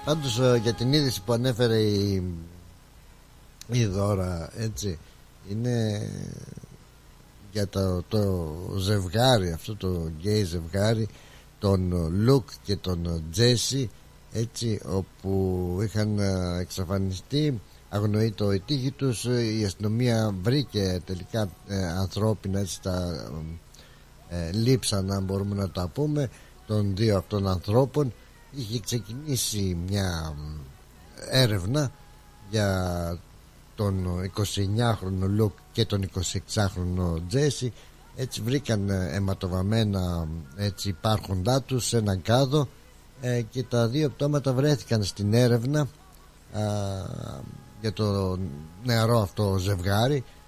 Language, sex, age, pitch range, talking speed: Greek, male, 60-79, 95-120 Hz, 100 wpm